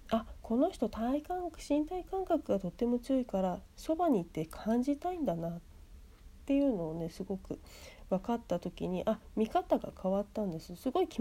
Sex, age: female, 40-59